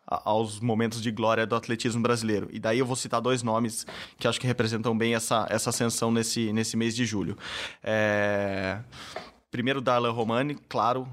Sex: male